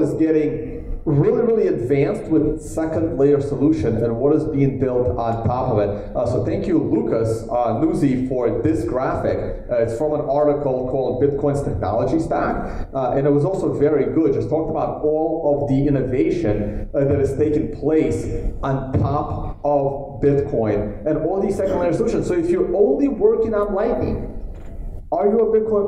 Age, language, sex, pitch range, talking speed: 30-49, English, male, 120-165 Hz, 180 wpm